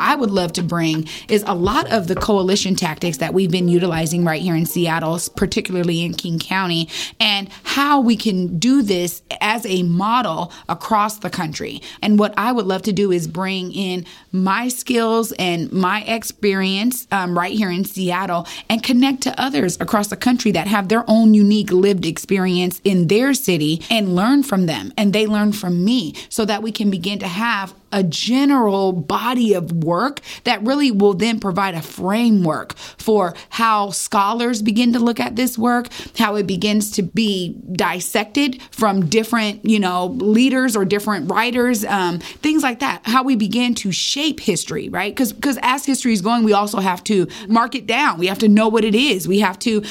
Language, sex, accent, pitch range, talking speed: English, female, American, 185-235 Hz, 190 wpm